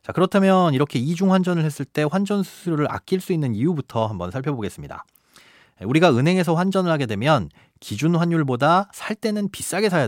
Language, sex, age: Korean, male, 30-49